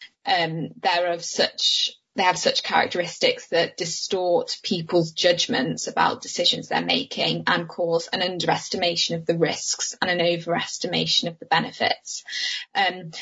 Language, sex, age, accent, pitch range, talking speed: English, female, 10-29, British, 170-210 Hz, 135 wpm